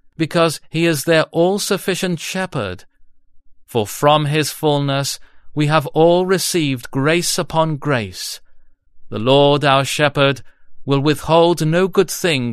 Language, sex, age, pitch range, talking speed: English, male, 40-59, 105-155 Hz, 125 wpm